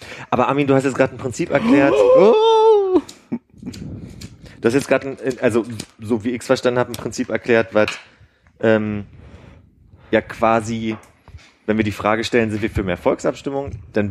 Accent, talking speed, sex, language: German, 160 wpm, male, German